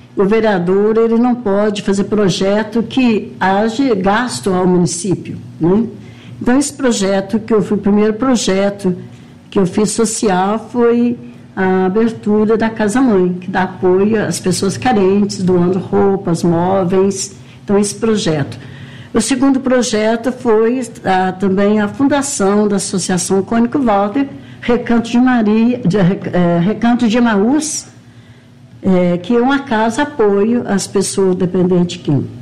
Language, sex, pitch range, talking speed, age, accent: English, female, 185-230 Hz, 140 wpm, 60-79, Brazilian